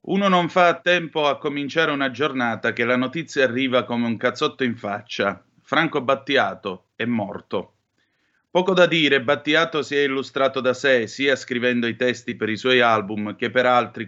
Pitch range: 120-150 Hz